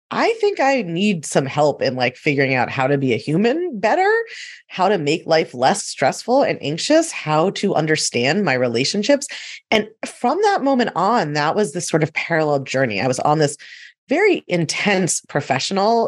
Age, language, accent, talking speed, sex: 30-49, English, American, 180 wpm, female